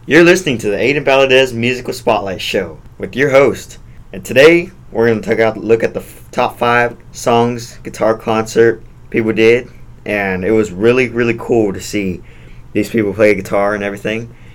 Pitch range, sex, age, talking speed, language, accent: 100-120 Hz, male, 20-39, 175 wpm, English, American